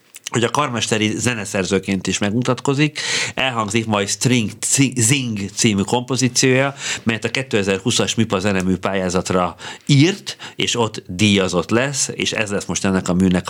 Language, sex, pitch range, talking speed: Hungarian, male, 100-125 Hz, 140 wpm